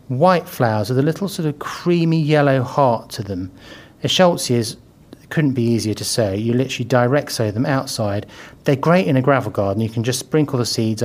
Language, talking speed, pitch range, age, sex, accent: English, 200 wpm, 105-140 Hz, 40-59, male, British